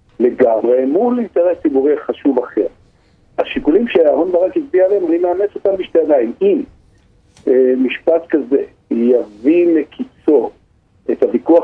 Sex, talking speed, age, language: male, 120 wpm, 50-69, Hebrew